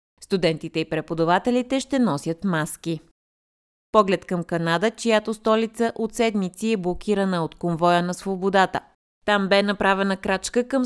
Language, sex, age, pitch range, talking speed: Bulgarian, female, 20-39, 170-220 Hz, 135 wpm